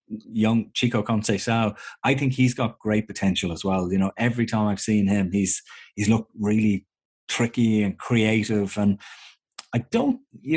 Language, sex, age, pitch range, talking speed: English, male, 30-49, 105-125 Hz, 165 wpm